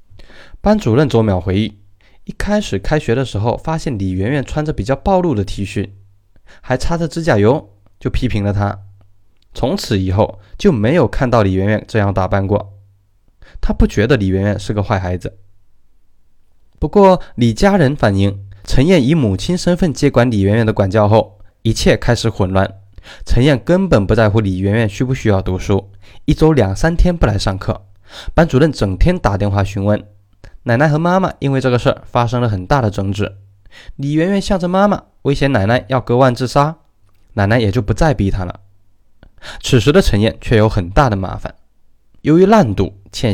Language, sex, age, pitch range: Chinese, male, 20-39, 100-135 Hz